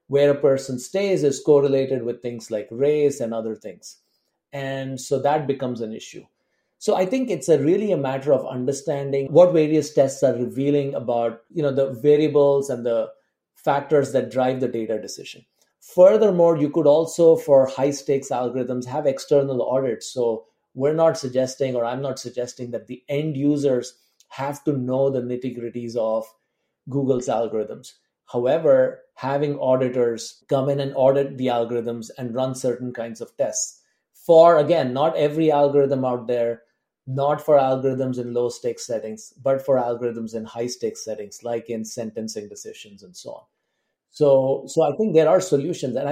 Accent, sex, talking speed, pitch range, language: Indian, male, 165 wpm, 125-150 Hz, English